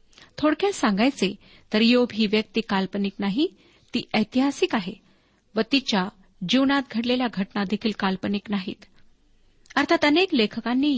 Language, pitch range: Marathi, 200-255 Hz